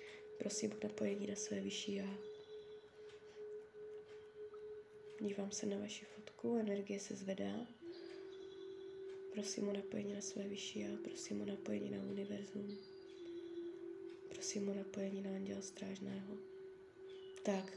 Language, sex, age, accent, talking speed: Czech, female, 20-39, native, 115 wpm